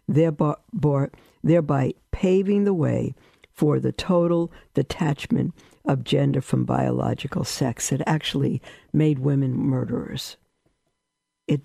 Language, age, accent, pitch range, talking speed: English, 60-79, American, 140-195 Hz, 105 wpm